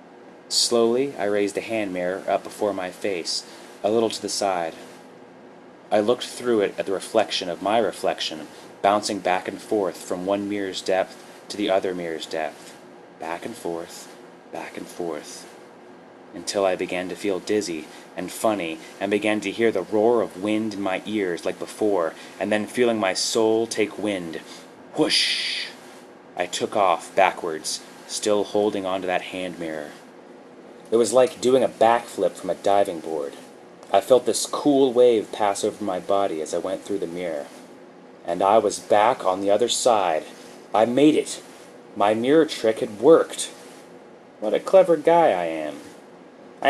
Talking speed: 170 wpm